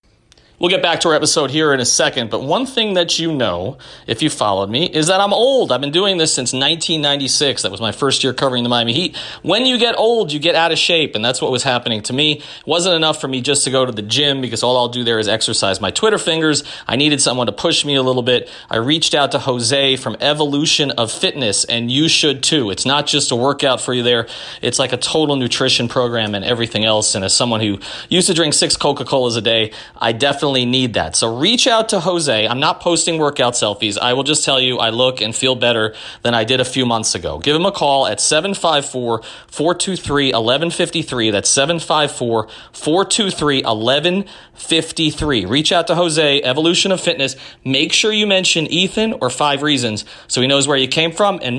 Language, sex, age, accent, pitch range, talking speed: English, male, 30-49, American, 120-165 Hz, 220 wpm